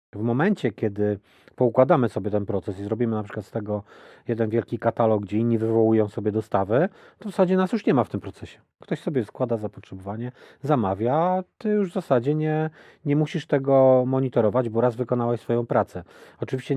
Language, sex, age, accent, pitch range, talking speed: Polish, male, 40-59, native, 110-135 Hz, 185 wpm